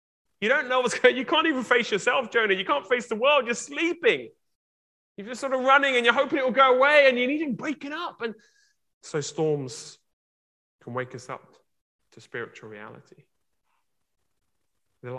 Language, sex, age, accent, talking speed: English, male, 20-39, British, 195 wpm